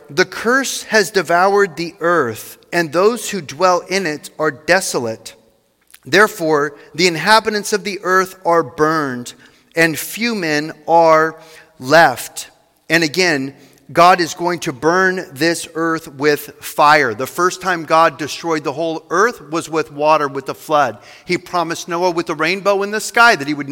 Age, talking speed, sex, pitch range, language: 40-59, 160 wpm, male, 155-190 Hz, English